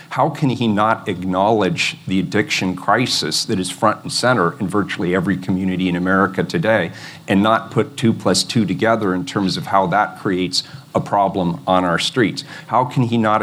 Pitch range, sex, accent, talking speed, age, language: 95-135 Hz, male, American, 190 wpm, 40-59, English